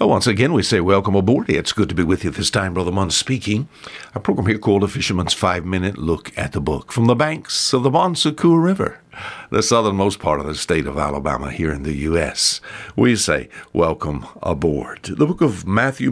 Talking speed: 210 wpm